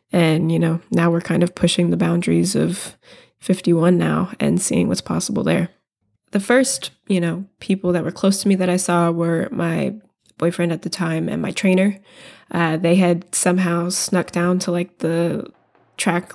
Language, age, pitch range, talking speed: English, 20-39, 170-190 Hz, 185 wpm